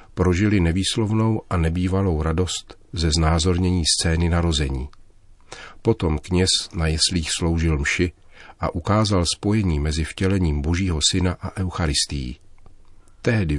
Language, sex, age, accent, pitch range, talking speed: Czech, male, 40-59, native, 80-95 Hz, 110 wpm